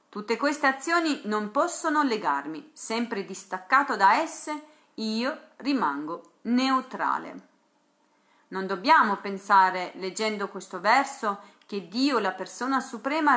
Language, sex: Italian, female